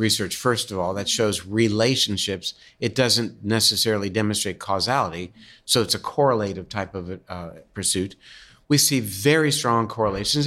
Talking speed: 145 wpm